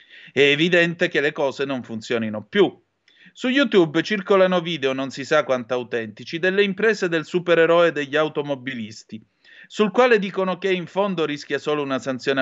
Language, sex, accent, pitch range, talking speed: Italian, male, native, 125-180 Hz, 160 wpm